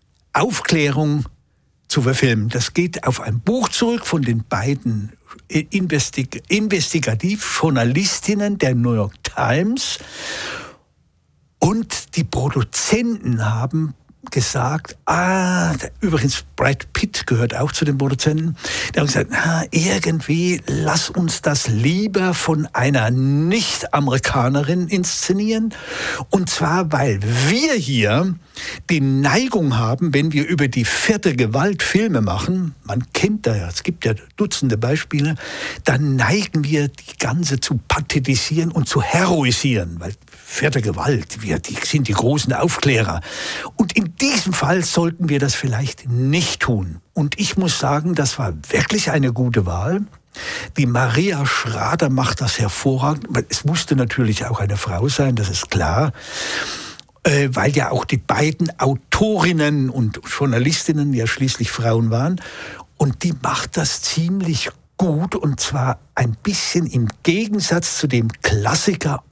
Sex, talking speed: male, 135 wpm